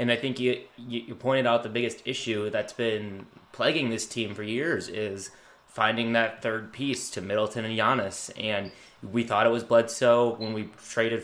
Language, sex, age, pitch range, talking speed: English, male, 20-39, 105-120 Hz, 185 wpm